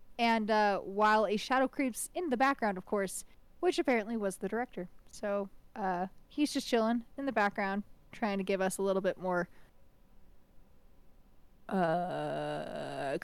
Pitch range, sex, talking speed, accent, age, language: 185-250 Hz, female, 150 wpm, American, 20-39, English